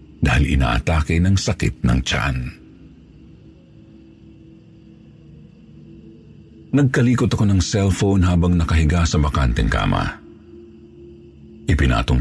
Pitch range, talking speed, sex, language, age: 75-115 Hz, 80 wpm, male, Filipino, 50-69